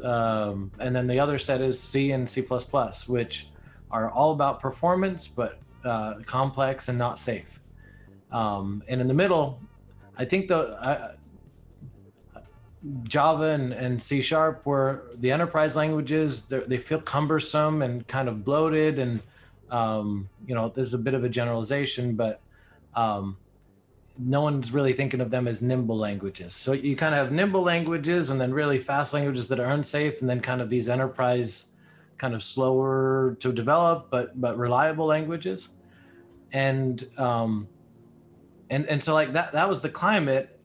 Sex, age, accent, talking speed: male, 30-49, American, 160 wpm